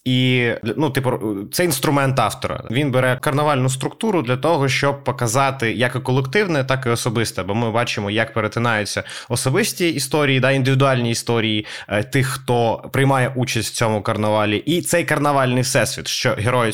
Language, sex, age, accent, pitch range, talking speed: Ukrainian, male, 20-39, native, 115-140 Hz, 155 wpm